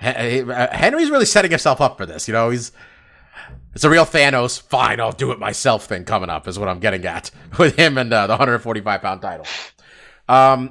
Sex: male